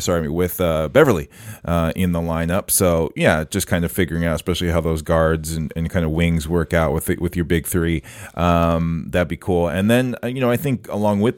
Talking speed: 230 wpm